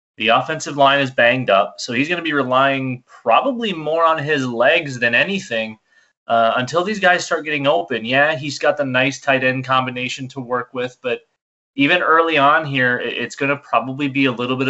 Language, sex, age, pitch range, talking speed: English, male, 20-39, 110-140 Hz, 205 wpm